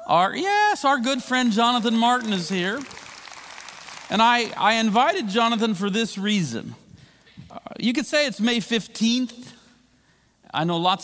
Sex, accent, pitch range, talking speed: male, American, 150-220 Hz, 140 wpm